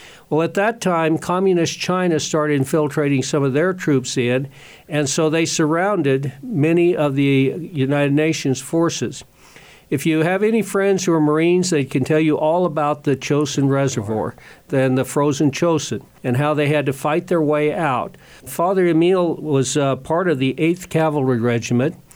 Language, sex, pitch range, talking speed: English, male, 135-165 Hz, 170 wpm